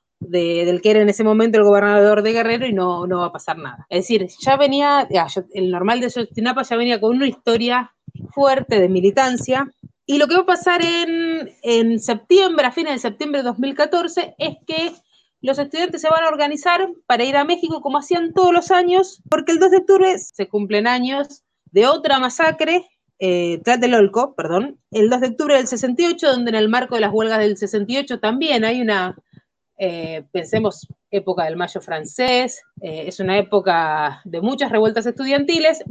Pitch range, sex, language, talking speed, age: 195-275 Hz, female, Spanish, 190 wpm, 30-49